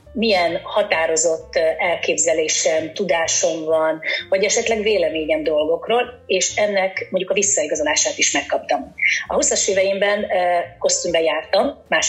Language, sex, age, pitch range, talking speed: Hungarian, female, 30-49, 170-260 Hz, 115 wpm